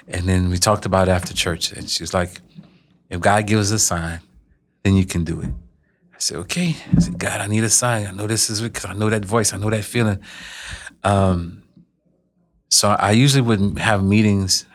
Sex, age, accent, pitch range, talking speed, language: male, 30-49, American, 90-120 Hz, 210 wpm, English